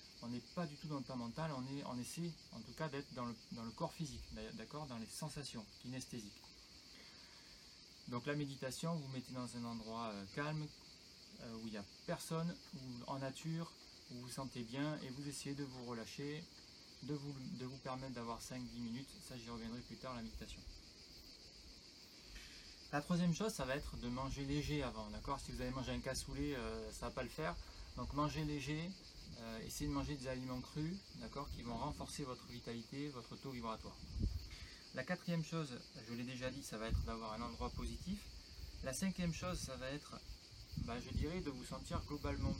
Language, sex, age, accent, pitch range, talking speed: French, male, 30-49, French, 115-140 Hz, 200 wpm